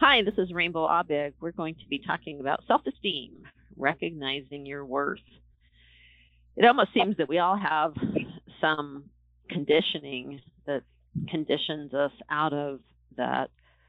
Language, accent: English, American